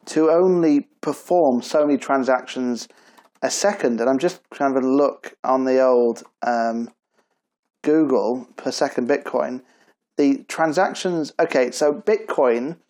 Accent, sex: British, male